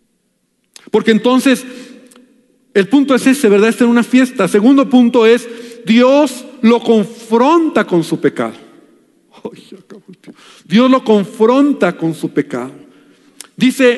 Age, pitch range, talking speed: 50-69, 180-240 Hz, 115 wpm